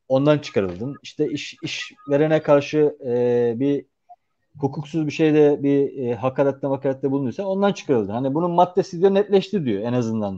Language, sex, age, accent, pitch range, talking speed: Turkish, male, 40-59, native, 130-160 Hz, 155 wpm